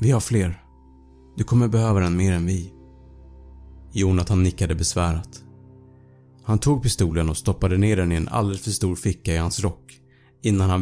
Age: 30-49